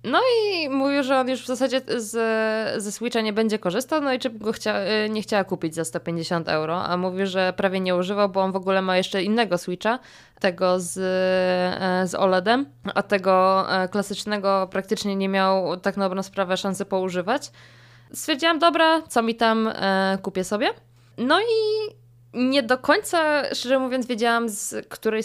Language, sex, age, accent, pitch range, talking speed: Polish, female, 20-39, native, 190-230 Hz, 175 wpm